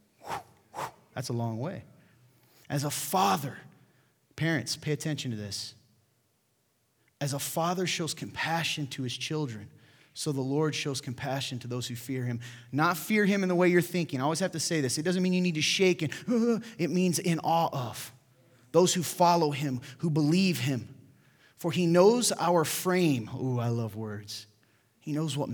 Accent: American